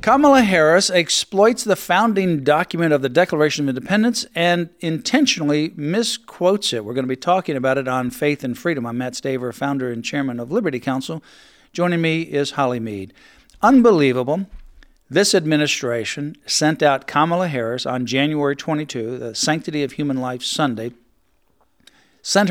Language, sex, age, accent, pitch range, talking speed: English, male, 50-69, American, 130-165 Hz, 150 wpm